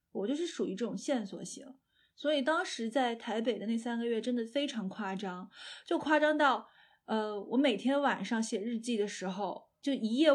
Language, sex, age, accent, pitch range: Chinese, female, 20-39, native, 200-250 Hz